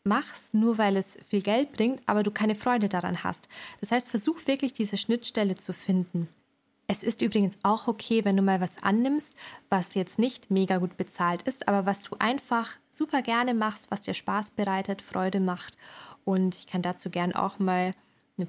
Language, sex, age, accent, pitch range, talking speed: German, female, 20-39, German, 190-235 Hz, 190 wpm